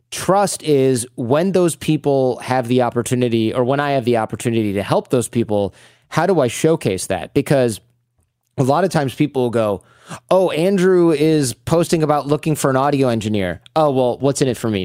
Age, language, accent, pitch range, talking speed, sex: 30-49, English, American, 115-150 Hz, 195 wpm, male